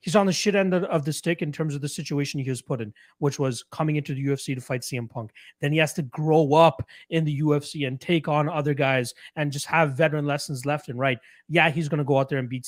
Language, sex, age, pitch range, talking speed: English, male, 30-49, 135-160 Hz, 275 wpm